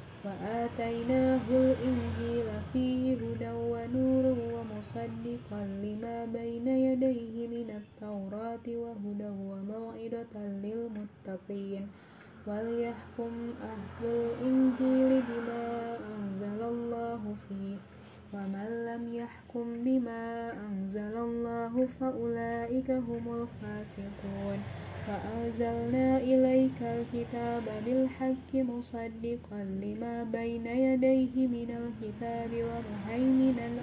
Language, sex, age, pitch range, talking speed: Indonesian, female, 10-29, 195-235 Hz, 75 wpm